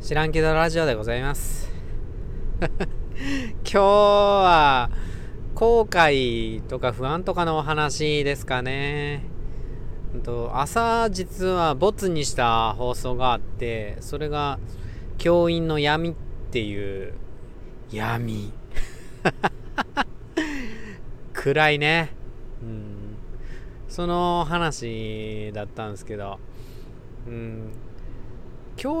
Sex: male